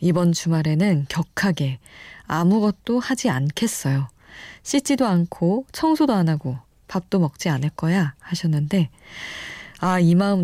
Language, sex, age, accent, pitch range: Korean, female, 20-39, native, 150-200 Hz